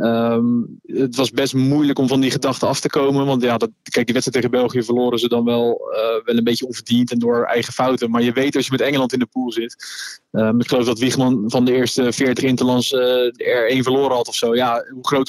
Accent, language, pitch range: Dutch, Dutch, 120-135 Hz